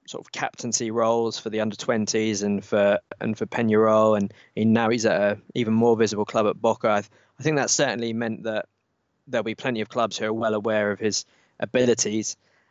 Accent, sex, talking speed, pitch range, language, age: British, male, 205 wpm, 110-130 Hz, English, 20-39